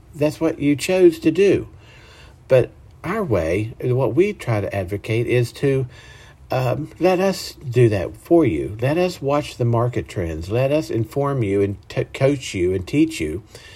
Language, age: English, 50-69